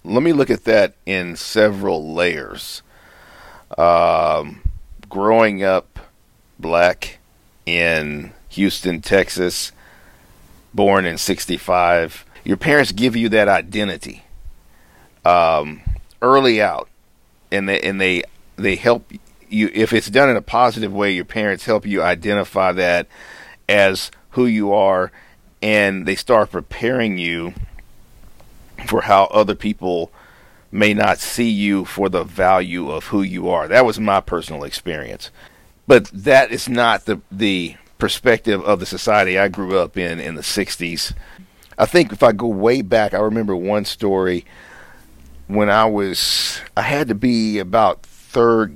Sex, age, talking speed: male, 50-69, 140 wpm